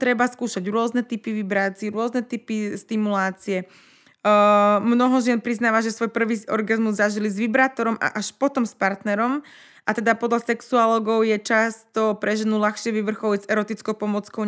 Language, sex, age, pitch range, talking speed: Slovak, female, 20-39, 210-235 Hz, 155 wpm